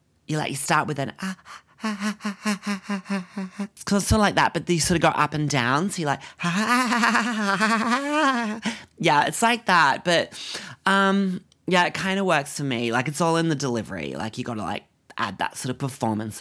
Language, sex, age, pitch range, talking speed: English, male, 30-49, 125-175 Hz, 195 wpm